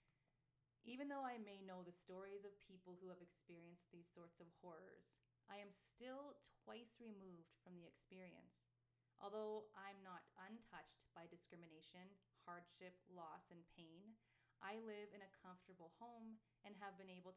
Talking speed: 150 wpm